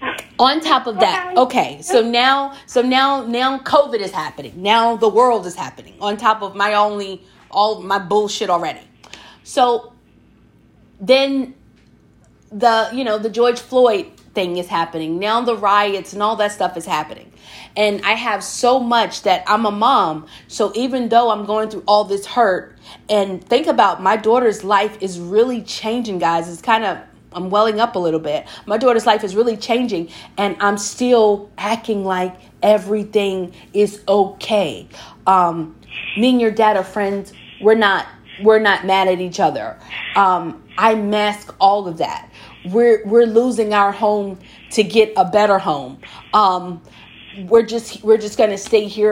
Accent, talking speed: American, 170 wpm